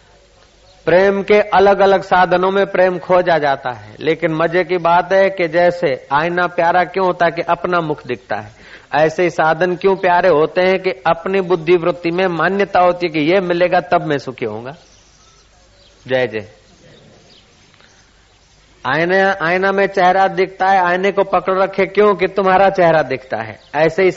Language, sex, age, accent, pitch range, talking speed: Hindi, male, 40-59, native, 155-190 Hz, 170 wpm